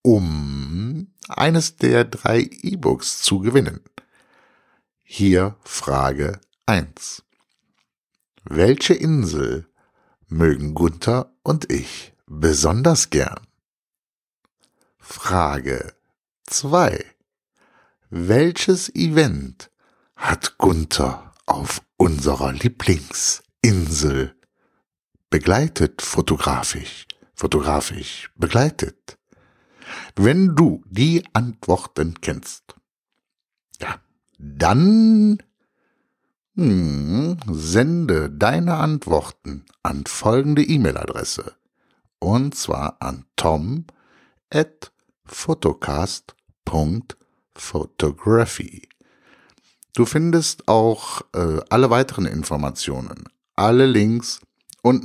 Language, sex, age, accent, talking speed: German, male, 60-79, German, 60 wpm